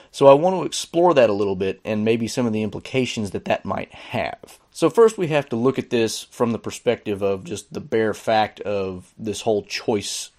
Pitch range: 105-140 Hz